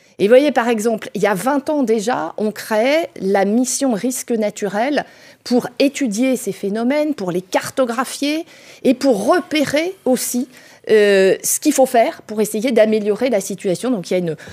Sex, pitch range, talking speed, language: female, 185-255 Hz, 180 wpm, French